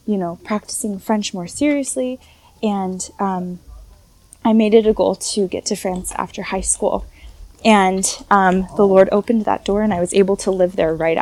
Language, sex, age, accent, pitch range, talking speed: English, female, 10-29, American, 180-215 Hz, 185 wpm